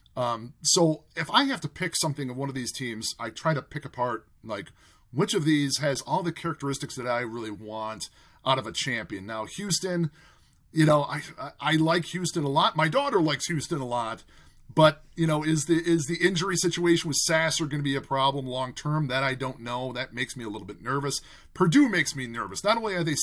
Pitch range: 130-170 Hz